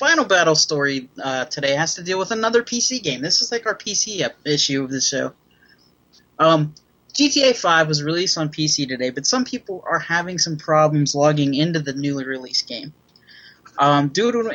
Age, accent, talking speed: 20-39, American, 190 wpm